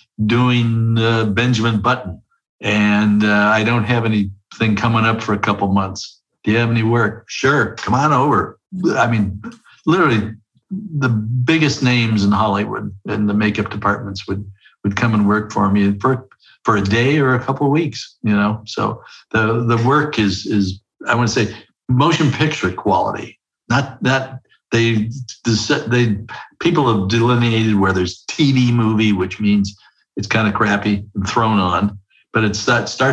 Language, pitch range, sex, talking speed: English, 105-125 Hz, male, 165 wpm